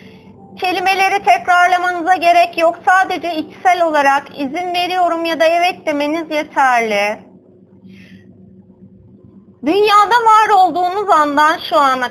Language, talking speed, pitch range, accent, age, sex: Turkish, 100 wpm, 275-370 Hz, native, 30-49, female